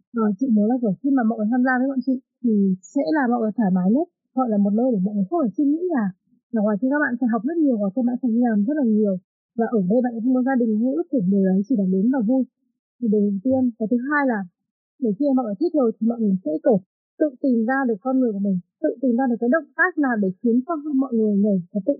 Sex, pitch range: female, 215-270 Hz